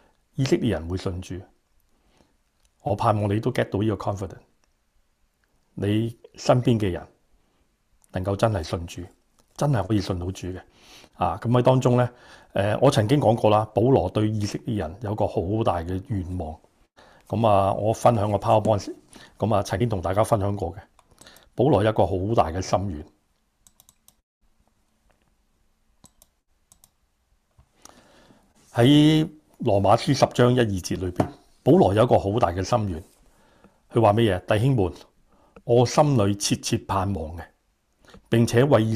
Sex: male